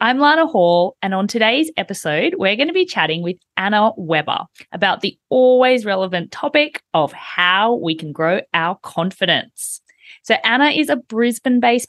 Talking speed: 160 wpm